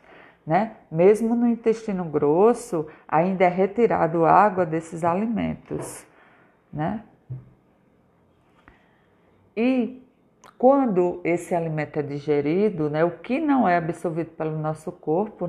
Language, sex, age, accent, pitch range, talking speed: Portuguese, female, 50-69, Brazilian, 155-195 Hz, 105 wpm